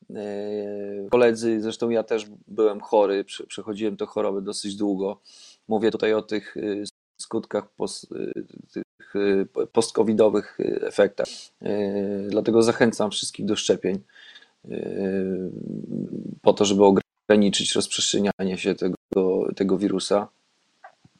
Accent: native